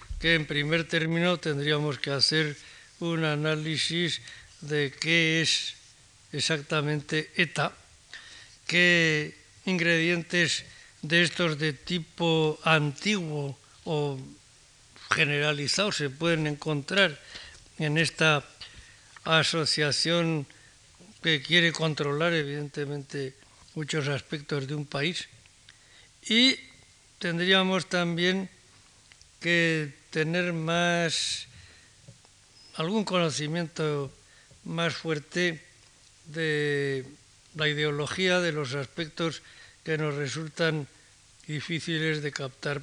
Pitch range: 135-170 Hz